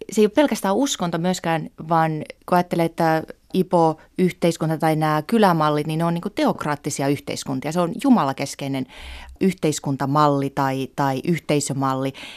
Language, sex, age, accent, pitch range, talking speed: Finnish, female, 30-49, native, 150-185 Hz, 125 wpm